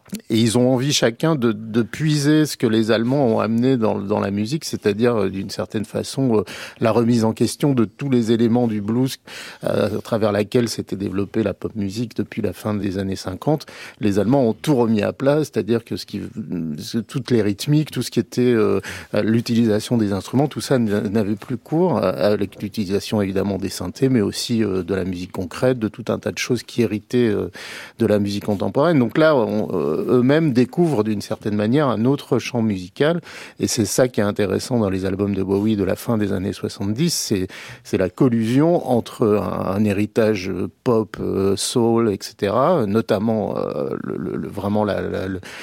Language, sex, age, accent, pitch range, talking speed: French, male, 50-69, French, 100-120 Hz, 195 wpm